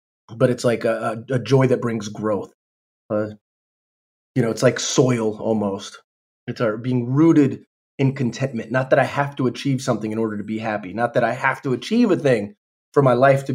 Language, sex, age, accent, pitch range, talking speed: English, male, 20-39, American, 115-145 Hz, 205 wpm